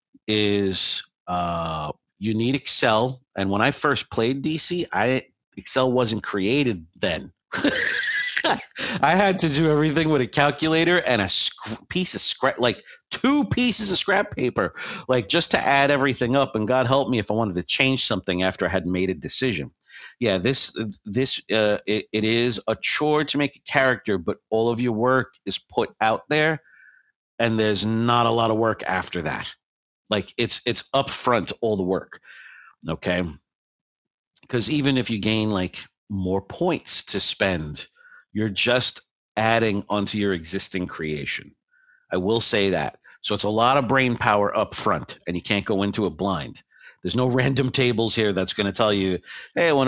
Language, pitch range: English, 95-130 Hz